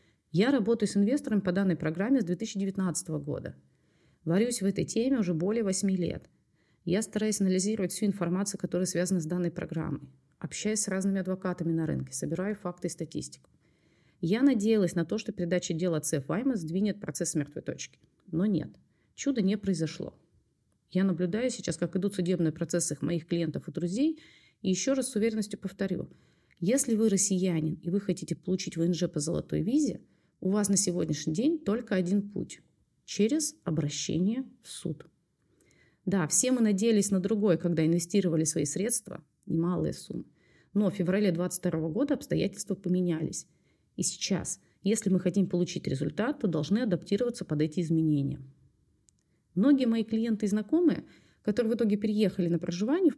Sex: female